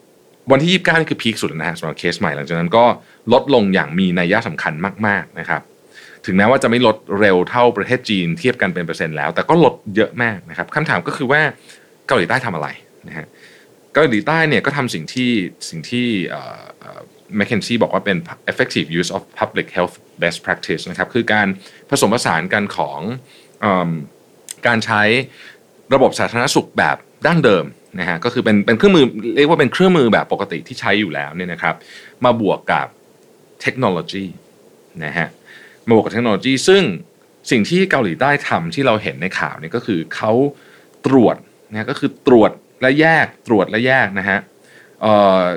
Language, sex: Thai, male